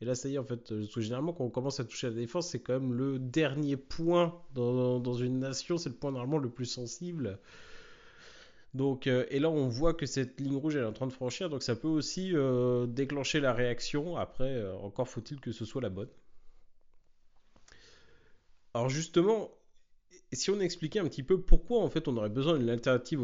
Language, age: French, 30-49